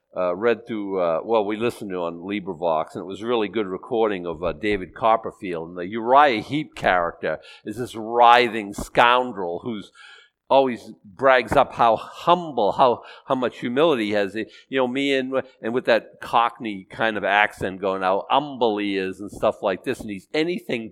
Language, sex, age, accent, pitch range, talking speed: English, male, 50-69, American, 100-125 Hz, 185 wpm